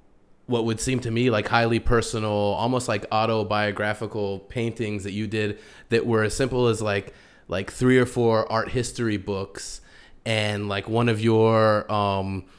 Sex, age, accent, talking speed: male, 20-39, American, 160 wpm